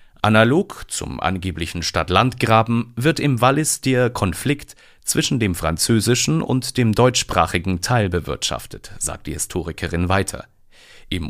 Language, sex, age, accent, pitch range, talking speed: German, male, 40-59, German, 95-125 Hz, 115 wpm